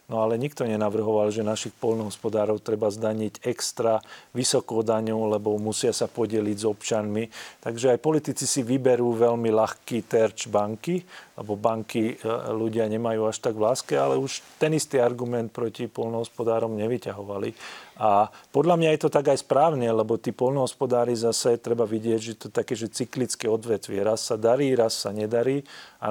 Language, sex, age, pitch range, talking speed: Slovak, male, 40-59, 105-120 Hz, 160 wpm